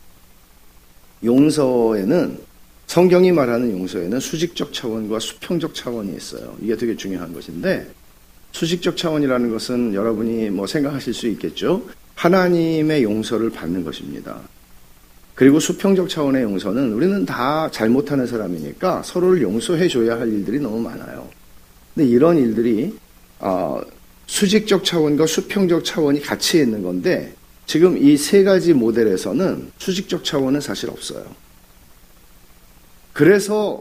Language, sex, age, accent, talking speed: English, male, 50-69, Korean, 105 wpm